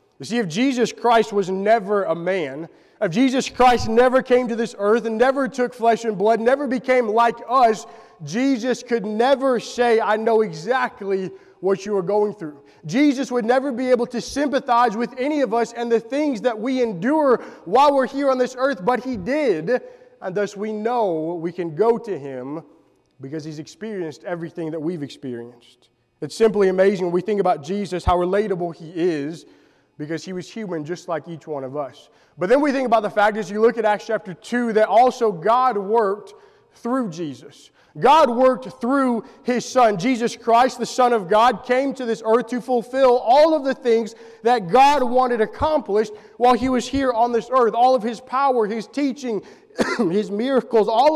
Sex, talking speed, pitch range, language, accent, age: male, 190 wpm, 195-255 Hz, English, American, 20-39